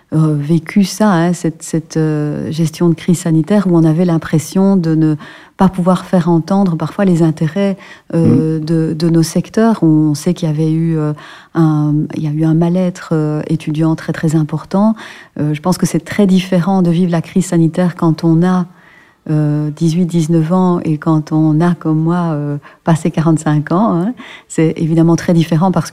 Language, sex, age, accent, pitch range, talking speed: French, female, 40-59, French, 160-180 Hz, 185 wpm